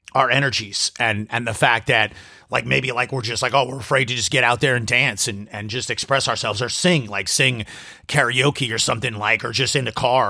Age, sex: 30-49, male